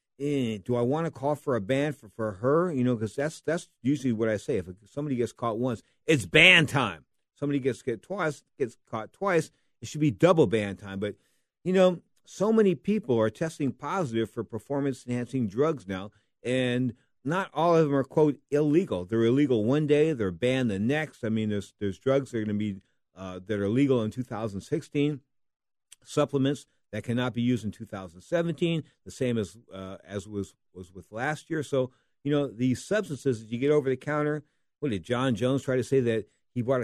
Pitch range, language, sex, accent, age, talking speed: 115-145 Hz, English, male, American, 50-69, 205 wpm